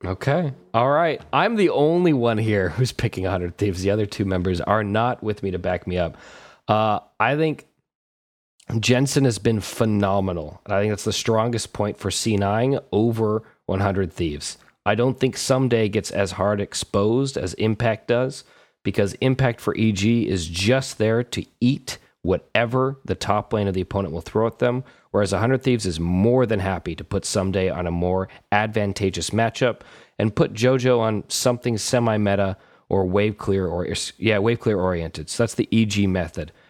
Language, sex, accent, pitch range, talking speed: English, male, American, 95-120 Hz, 180 wpm